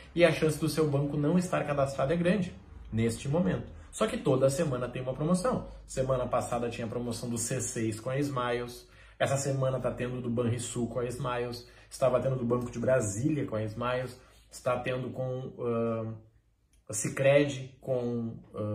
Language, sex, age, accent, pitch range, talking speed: Portuguese, male, 20-39, Brazilian, 120-170 Hz, 175 wpm